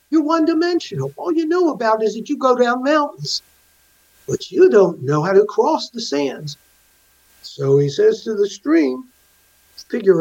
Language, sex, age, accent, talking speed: English, male, 60-79, American, 165 wpm